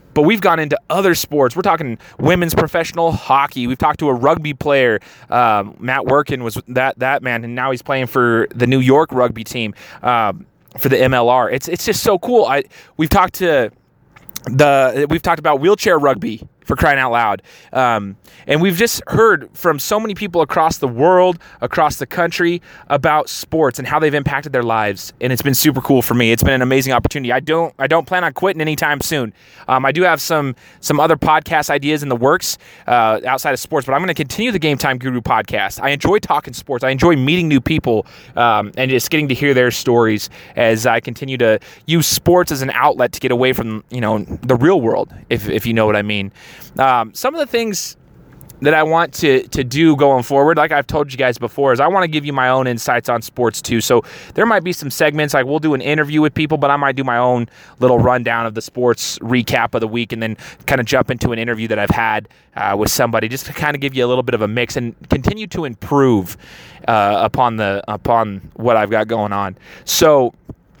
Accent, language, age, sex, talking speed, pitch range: American, English, 20-39, male, 225 wpm, 120-155 Hz